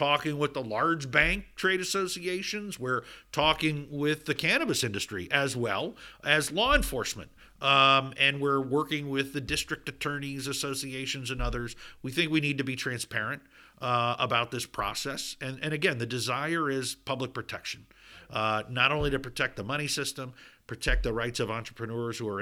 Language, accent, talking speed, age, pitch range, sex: English, American, 170 wpm, 50-69, 115-145 Hz, male